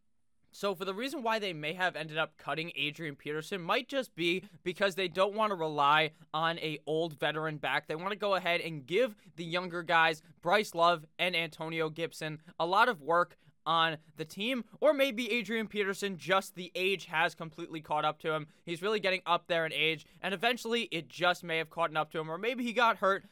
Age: 20-39